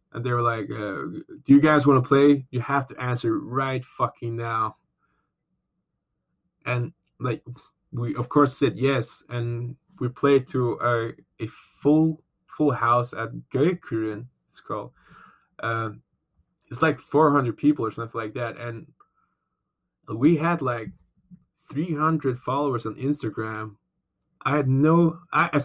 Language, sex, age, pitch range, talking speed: English, male, 20-39, 115-140 Hz, 145 wpm